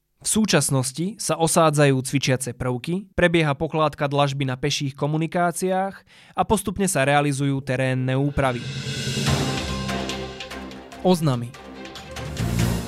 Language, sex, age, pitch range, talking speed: Slovak, male, 20-39, 130-160 Hz, 90 wpm